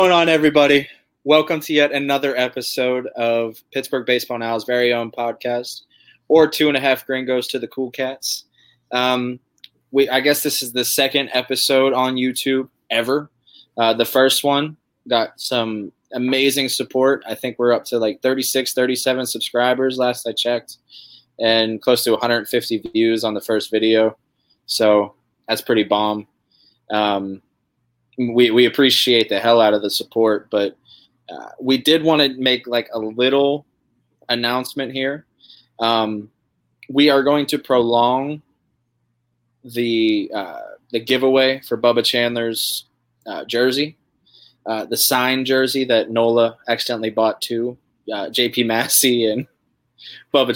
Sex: male